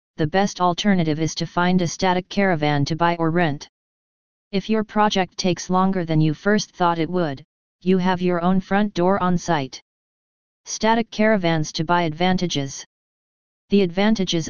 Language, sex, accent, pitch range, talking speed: English, female, American, 165-190 Hz, 160 wpm